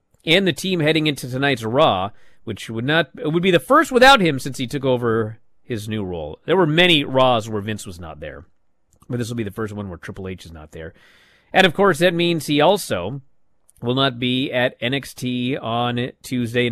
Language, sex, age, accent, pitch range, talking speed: English, male, 40-59, American, 110-165 Hz, 215 wpm